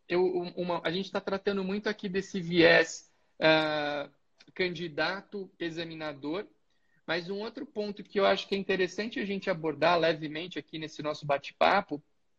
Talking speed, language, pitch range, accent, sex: 135 wpm, Portuguese, 160-200 Hz, Brazilian, male